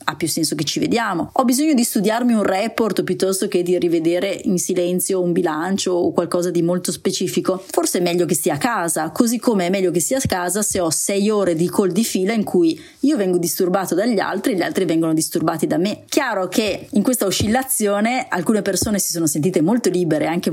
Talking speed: 220 wpm